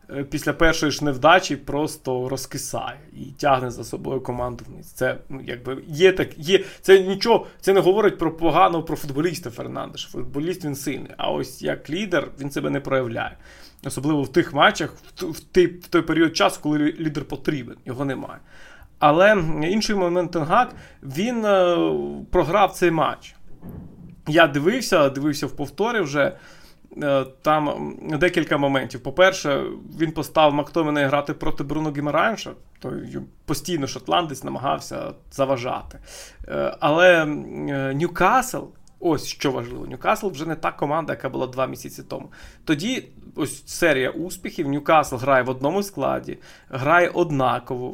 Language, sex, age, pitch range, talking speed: Ukrainian, male, 30-49, 140-175 Hz, 135 wpm